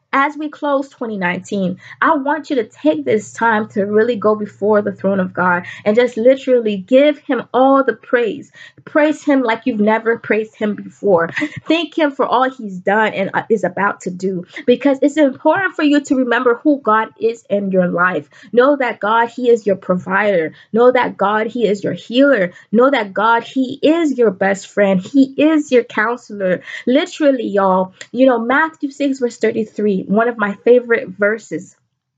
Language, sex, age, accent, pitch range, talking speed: English, female, 20-39, American, 205-270 Hz, 185 wpm